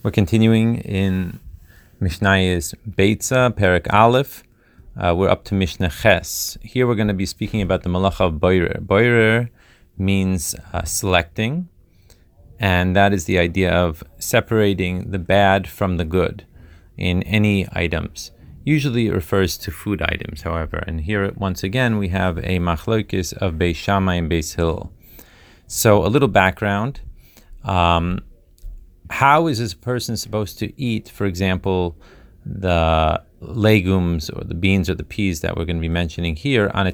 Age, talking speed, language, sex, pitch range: 30-49, 160 wpm, Hebrew, male, 90-105 Hz